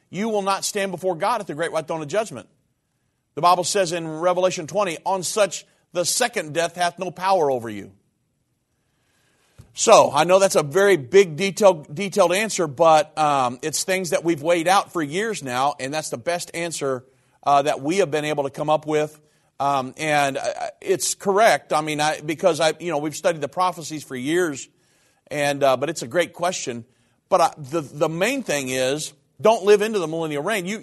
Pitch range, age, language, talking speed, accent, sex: 145-185 Hz, 40-59, English, 200 wpm, American, male